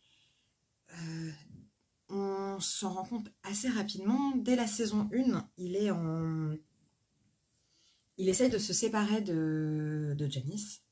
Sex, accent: female, French